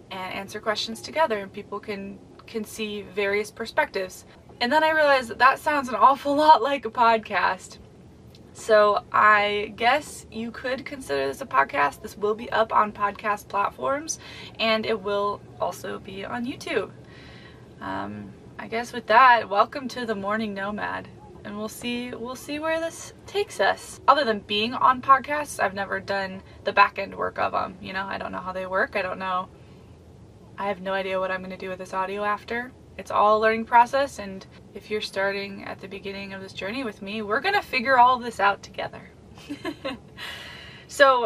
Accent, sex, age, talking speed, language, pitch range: American, female, 20-39, 190 wpm, English, 195-235 Hz